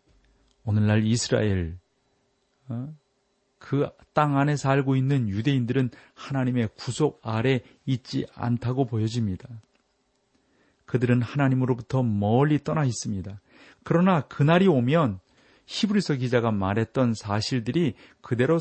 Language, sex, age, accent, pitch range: Korean, male, 40-59, native, 115-145 Hz